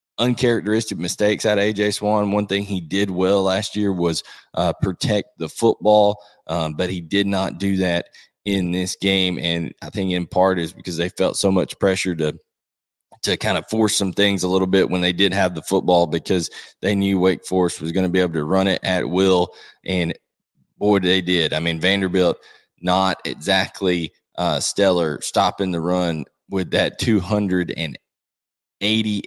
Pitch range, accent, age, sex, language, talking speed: 90-105 Hz, American, 20-39, male, English, 180 wpm